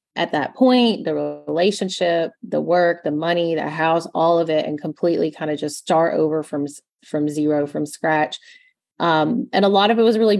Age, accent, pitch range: 30-49, American, 155-185 Hz